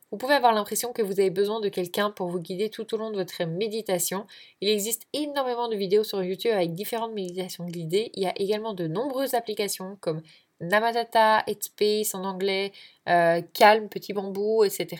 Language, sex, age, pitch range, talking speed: French, female, 10-29, 185-220 Hz, 190 wpm